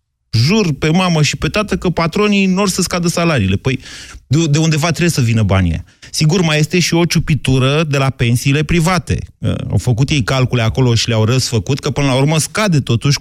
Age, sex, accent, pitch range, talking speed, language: 30-49, male, native, 105-140 Hz, 195 wpm, Romanian